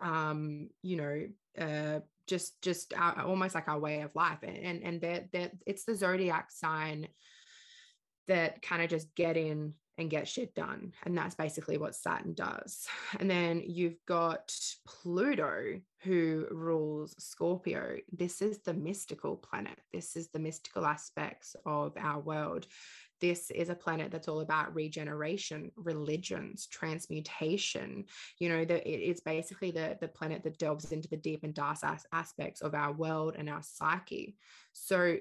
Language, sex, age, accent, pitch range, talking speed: English, female, 20-39, Australian, 155-175 Hz, 155 wpm